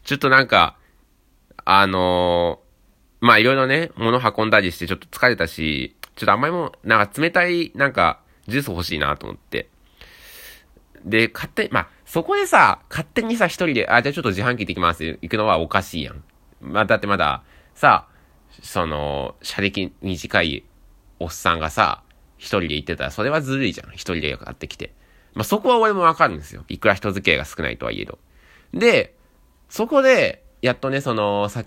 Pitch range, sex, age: 85-130 Hz, male, 20-39